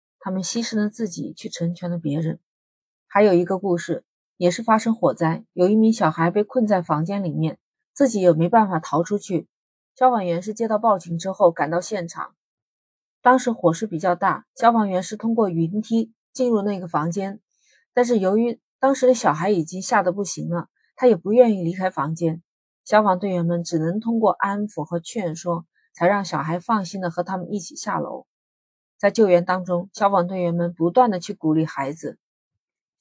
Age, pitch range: 30-49, 170-220 Hz